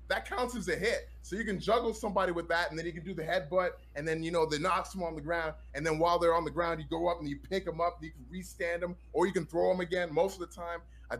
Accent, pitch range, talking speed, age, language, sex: American, 145-180 Hz, 315 wpm, 20-39, English, male